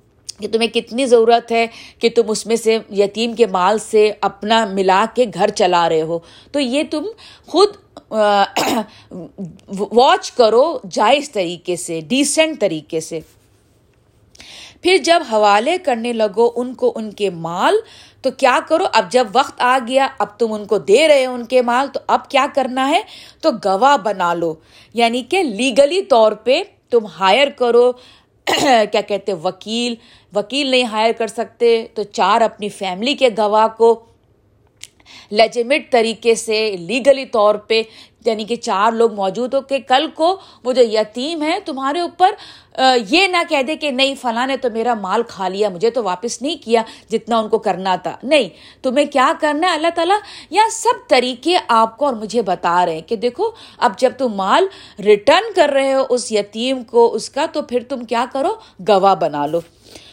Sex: female